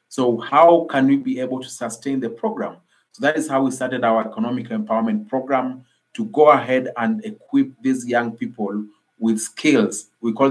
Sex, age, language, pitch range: male, 30-49, English, 115-140 Hz